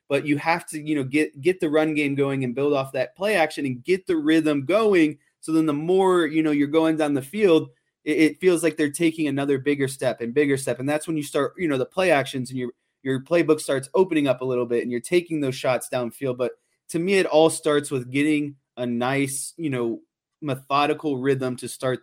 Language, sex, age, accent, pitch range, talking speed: English, male, 20-39, American, 130-155 Hz, 240 wpm